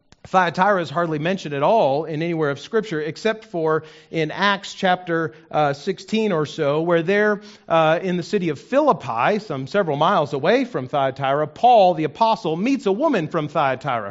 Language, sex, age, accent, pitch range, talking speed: English, male, 40-59, American, 145-210 Hz, 170 wpm